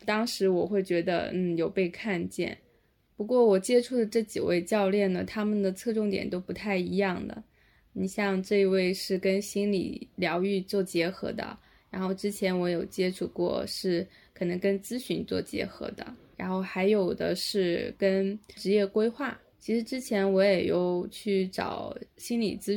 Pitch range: 180-210 Hz